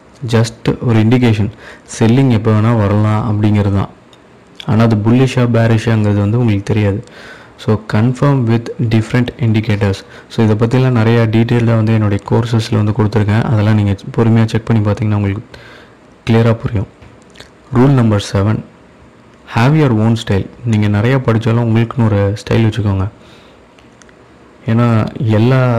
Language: Tamil